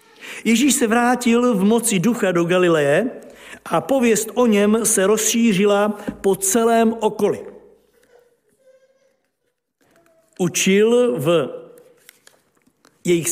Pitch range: 190-235 Hz